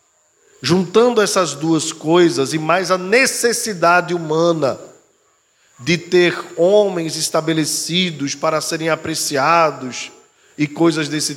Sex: male